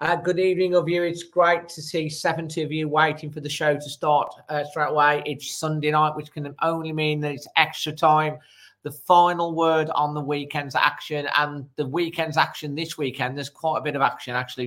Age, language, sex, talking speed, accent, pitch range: 40-59, English, male, 215 wpm, British, 135-155 Hz